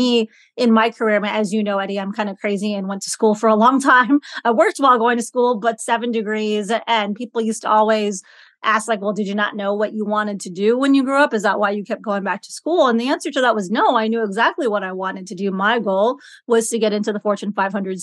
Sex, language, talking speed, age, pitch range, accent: female, English, 275 wpm, 30-49, 210-250 Hz, American